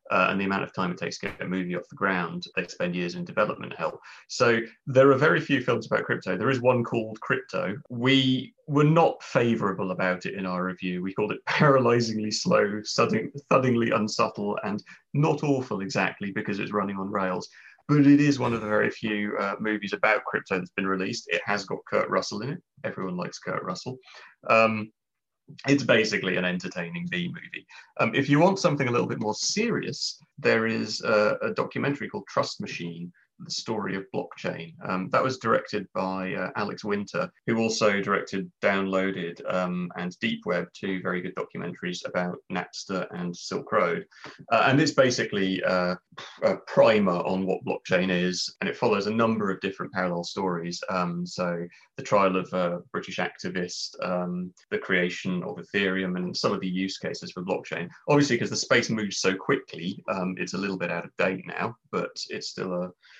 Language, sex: English, male